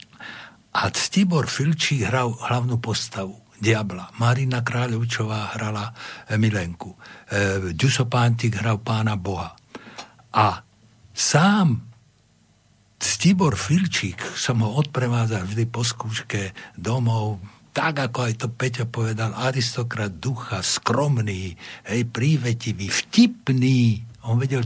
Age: 60-79